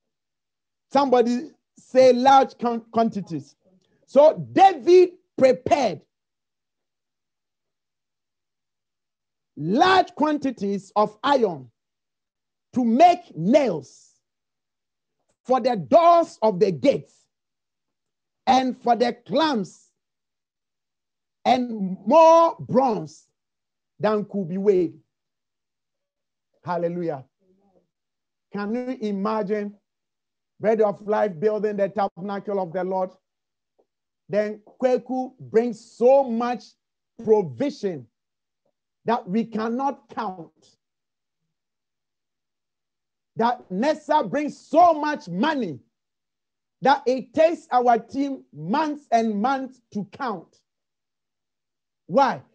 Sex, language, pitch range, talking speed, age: male, English, 190-275 Hz, 80 wpm, 50-69